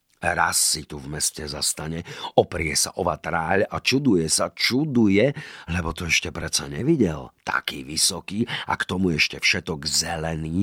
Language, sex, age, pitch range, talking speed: Slovak, male, 50-69, 80-115 Hz, 150 wpm